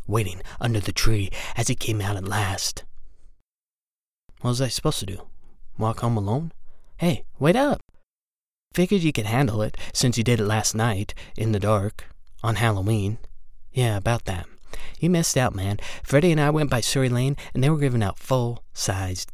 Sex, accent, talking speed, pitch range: male, American, 180 wpm, 105-145 Hz